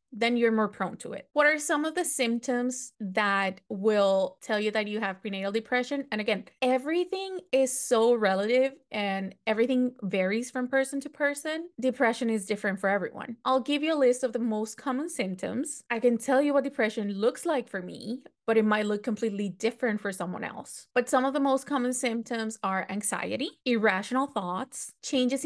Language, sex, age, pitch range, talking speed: English, female, 20-39, 200-250 Hz, 190 wpm